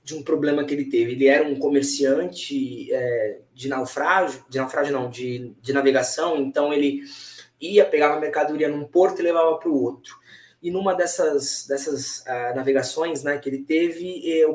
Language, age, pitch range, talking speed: Portuguese, 20-39, 135-155 Hz, 175 wpm